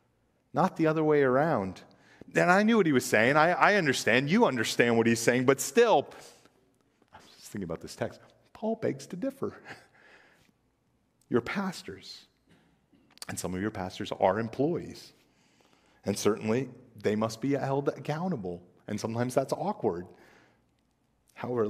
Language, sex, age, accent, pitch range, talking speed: English, male, 40-59, American, 95-135 Hz, 150 wpm